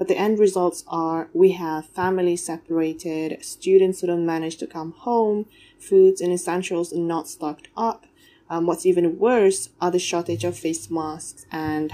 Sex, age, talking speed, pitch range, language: female, 20-39, 165 wpm, 160-185 Hz, English